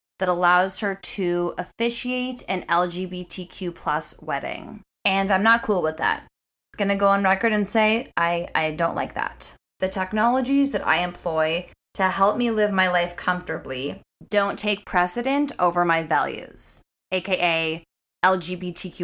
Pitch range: 165-195 Hz